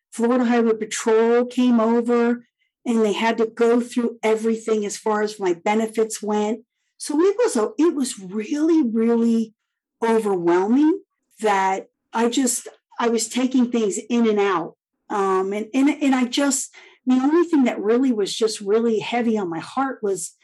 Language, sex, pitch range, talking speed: English, female, 230-340 Hz, 160 wpm